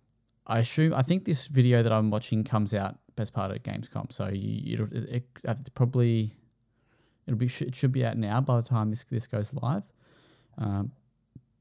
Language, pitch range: English, 105-125 Hz